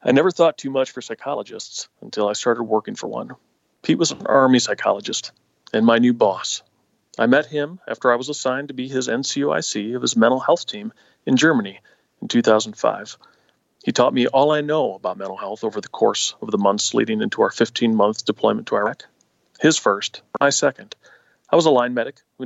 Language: English